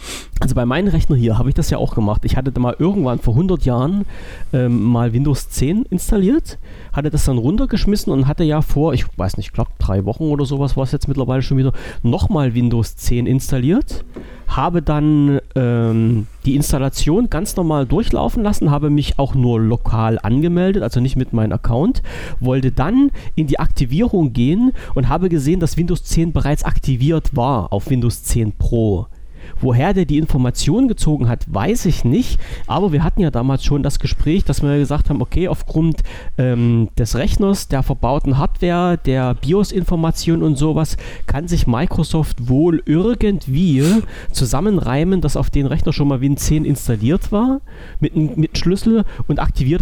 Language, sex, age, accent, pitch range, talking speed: German, male, 40-59, German, 120-165 Hz, 170 wpm